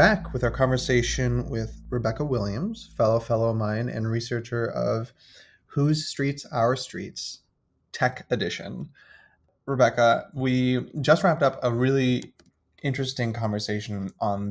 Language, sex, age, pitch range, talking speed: English, male, 30-49, 110-130 Hz, 125 wpm